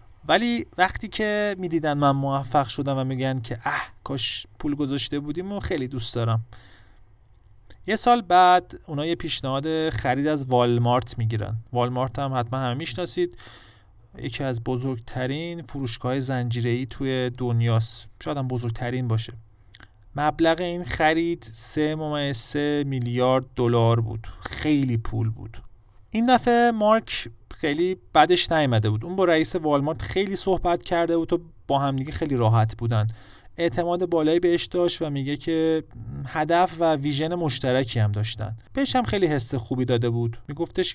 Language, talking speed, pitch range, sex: Persian, 140 wpm, 115-160 Hz, male